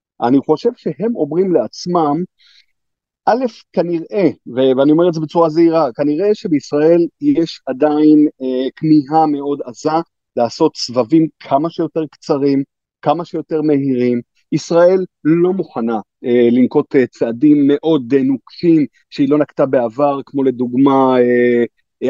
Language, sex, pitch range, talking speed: Hebrew, male, 130-180 Hz, 125 wpm